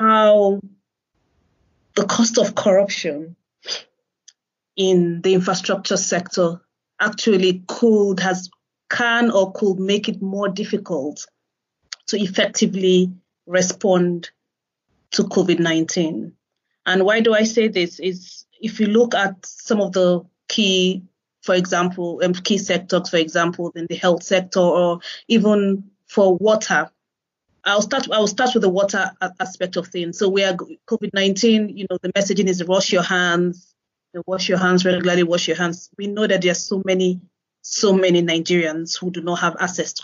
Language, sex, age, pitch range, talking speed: English, female, 30-49, 180-210 Hz, 150 wpm